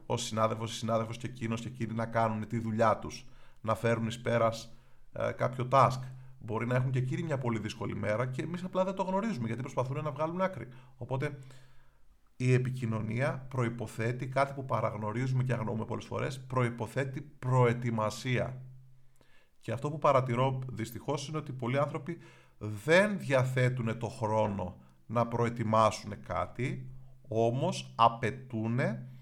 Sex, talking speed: male, 145 wpm